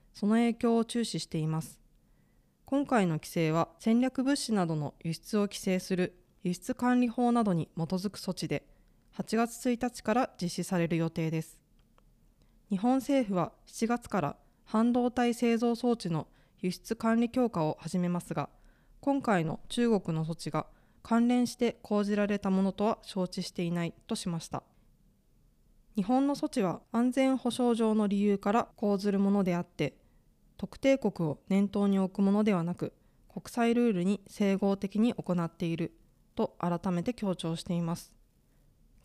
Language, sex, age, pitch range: Japanese, female, 20-39, 175-235 Hz